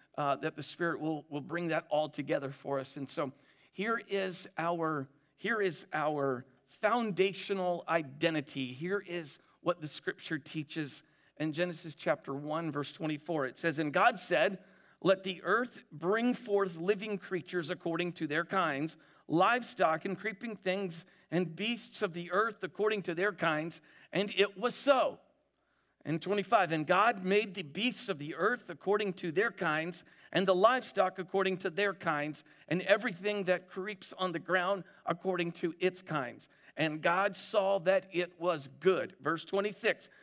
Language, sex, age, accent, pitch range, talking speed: English, male, 50-69, American, 160-205 Hz, 160 wpm